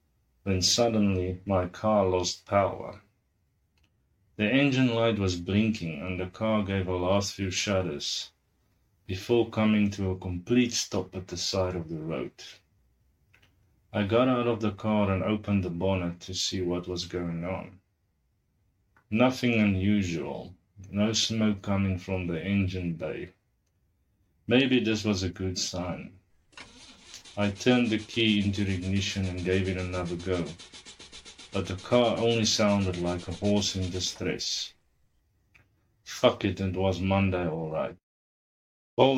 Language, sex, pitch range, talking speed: English, male, 90-105 Hz, 140 wpm